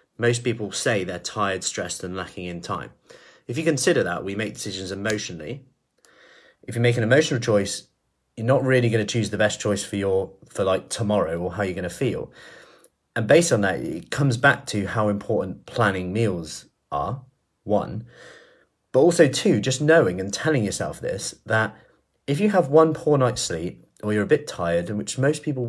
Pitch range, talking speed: 100-130 Hz, 195 wpm